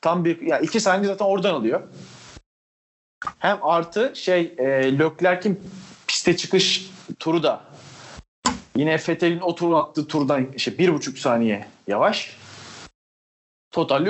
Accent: native